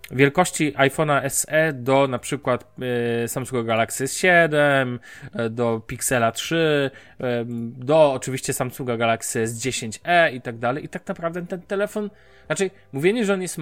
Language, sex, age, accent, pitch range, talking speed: Polish, male, 20-39, native, 125-165 Hz, 145 wpm